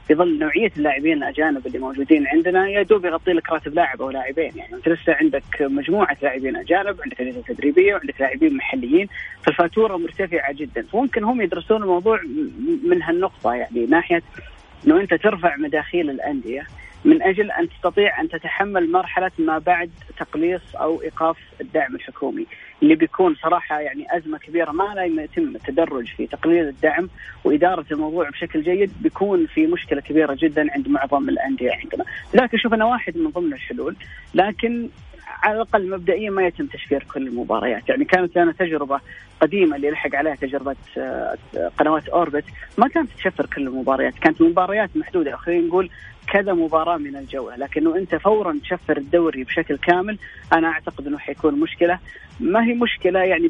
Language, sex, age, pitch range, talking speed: Arabic, female, 20-39, 155-220 Hz, 155 wpm